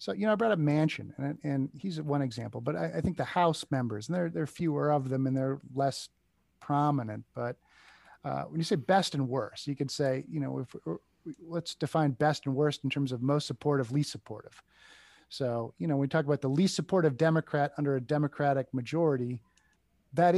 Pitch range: 135-155 Hz